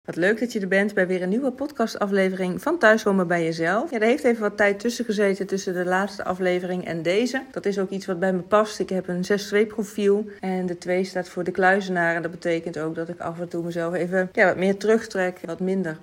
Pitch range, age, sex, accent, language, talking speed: 170-195 Hz, 40-59, female, Dutch, Dutch, 250 wpm